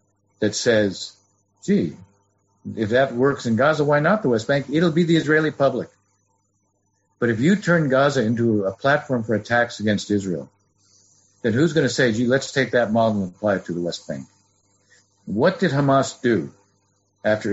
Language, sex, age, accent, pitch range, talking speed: English, male, 50-69, American, 100-135 Hz, 180 wpm